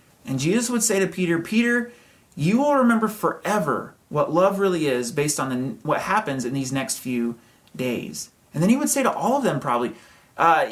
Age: 30-49